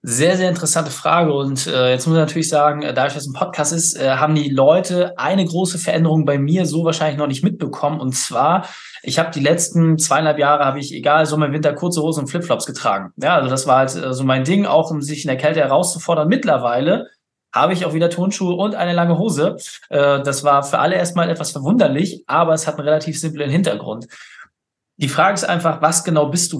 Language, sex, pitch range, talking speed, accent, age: German, male, 140-165 Hz, 220 wpm, German, 20-39